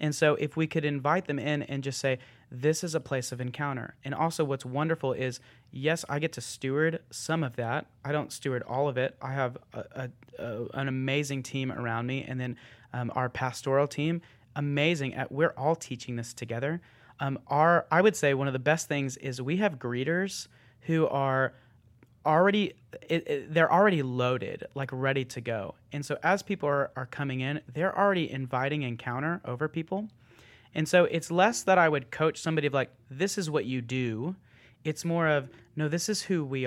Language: English